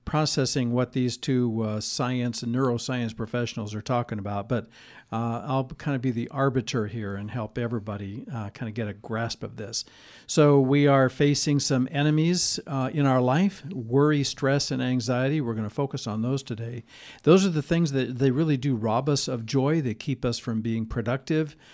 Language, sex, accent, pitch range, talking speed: English, male, American, 115-140 Hz, 195 wpm